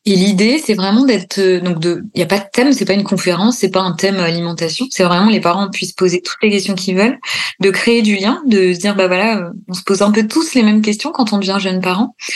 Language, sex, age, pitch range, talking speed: French, female, 20-39, 185-215 Hz, 270 wpm